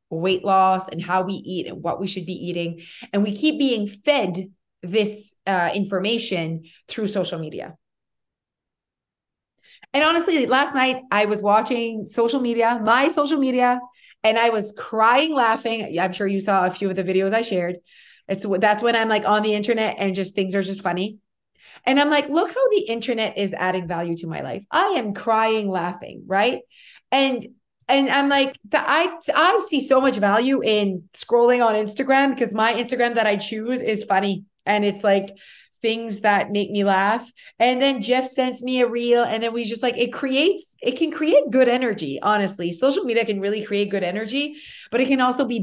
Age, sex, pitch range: 30-49, female, 195-250 Hz